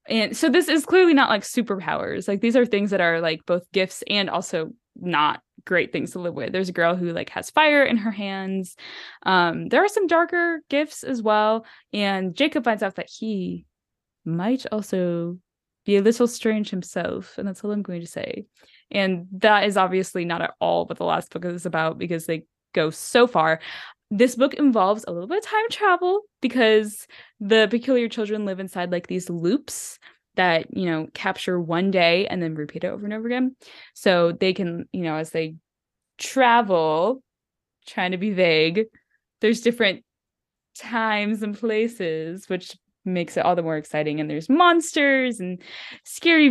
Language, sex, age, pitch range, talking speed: English, female, 10-29, 175-235 Hz, 185 wpm